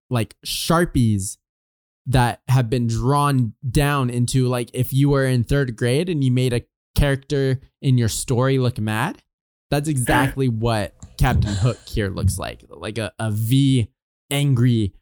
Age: 20-39